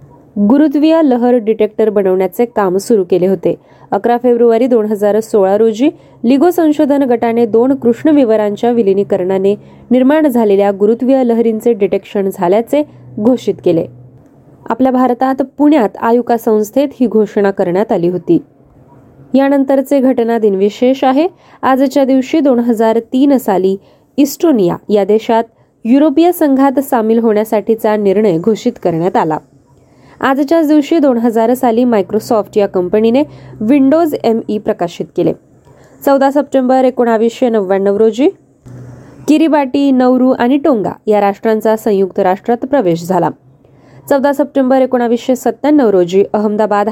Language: Marathi